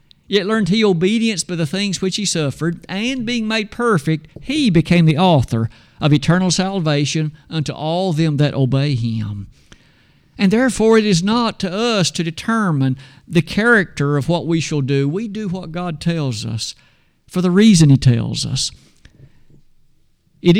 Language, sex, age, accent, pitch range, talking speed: English, male, 50-69, American, 145-200 Hz, 165 wpm